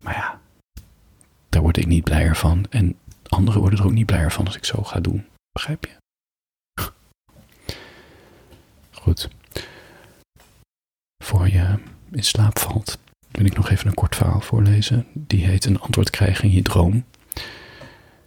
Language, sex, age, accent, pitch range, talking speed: Dutch, male, 40-59, Dutch, 90-105 Hz, 150 wpm